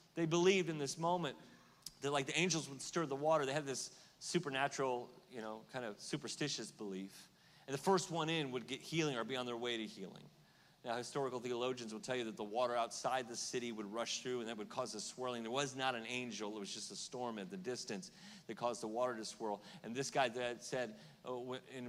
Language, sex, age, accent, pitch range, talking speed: English, male, 40-59, American, 110-150 Hz, 230 wpm